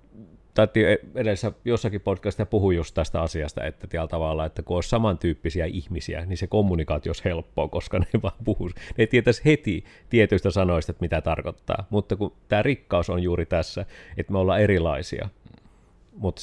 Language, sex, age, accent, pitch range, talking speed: Finnish, male, 30-49, native, 85-105 Hz, 155 wpm